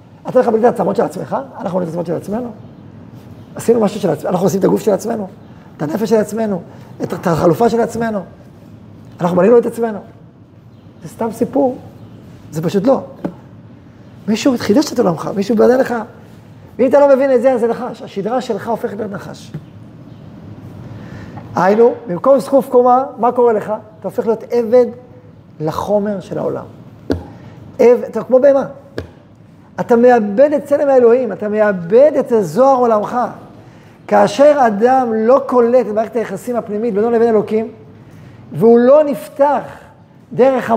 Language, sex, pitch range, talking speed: Hebrew, male, 190-250 Hz, 155 wpm